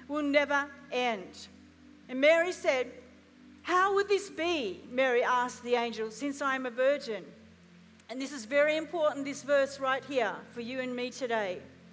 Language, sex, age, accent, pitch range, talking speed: English, female, 50-69, Australian, 235-300 Hz, 165 wpm